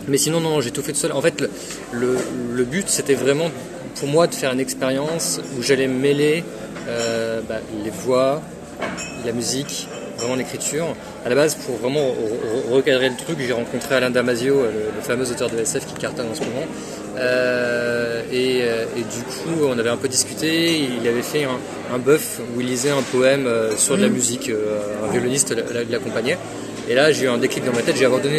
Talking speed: 205 wpm